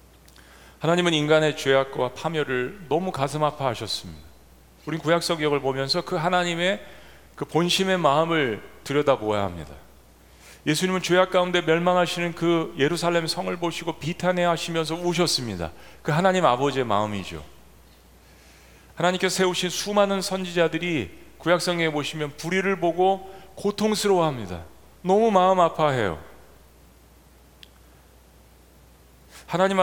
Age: 40-59